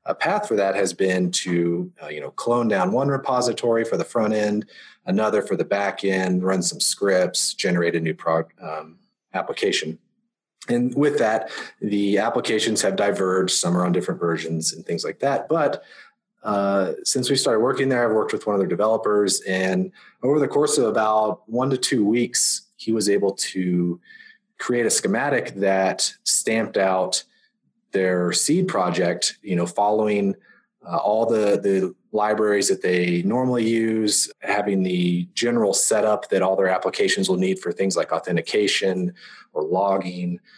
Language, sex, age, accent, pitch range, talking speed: English, male, 30-49, American, 90-120 Hz, 165 wpm